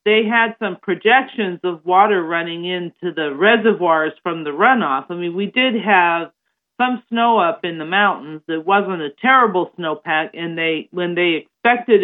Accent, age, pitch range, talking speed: American, 50-69, 165-220 Hz, 170 wpm